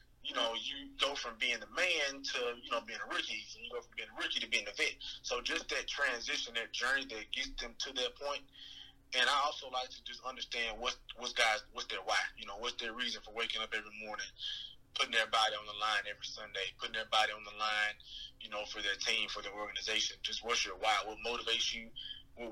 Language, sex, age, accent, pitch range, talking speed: English, male, 20-39, American, 105-125 Hz, 240 wpm